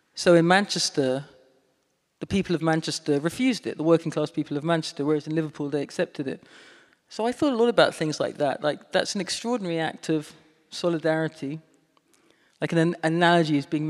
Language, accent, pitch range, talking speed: English, British, 155-175 Hz, 180 wpm